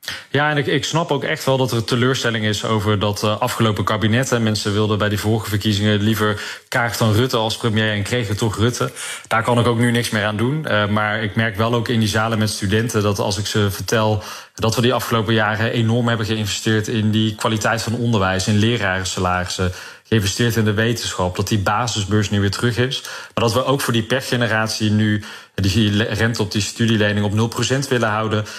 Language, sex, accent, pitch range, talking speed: Dutch, male, Dutch, 100-115 Hz, 220 wpm